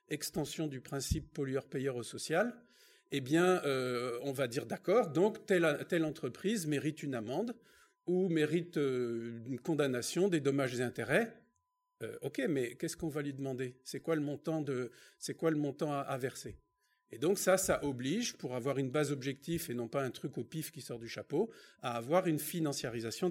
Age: 50-69